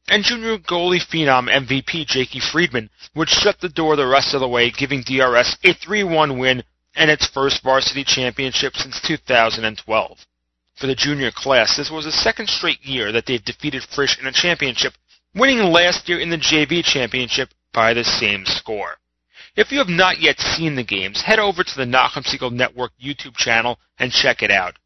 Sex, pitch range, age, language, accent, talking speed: male, 120-150 Hz, 30-49, English, American, 185 wpm